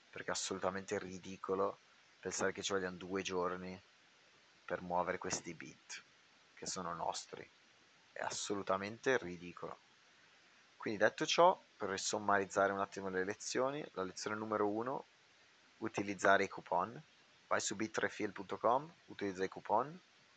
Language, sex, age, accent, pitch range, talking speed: Italian, male, 30-49, native, 95-105 Hz, 125 wpm